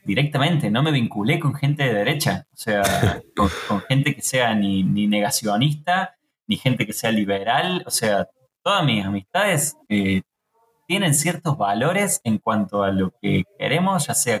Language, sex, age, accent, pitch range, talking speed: Spanish, male, 20-39, Argentinian, 105-150 Hz, 165 wpm